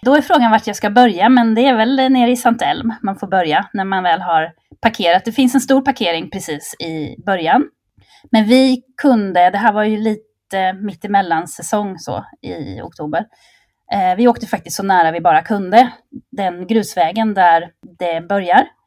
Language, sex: Swedish, female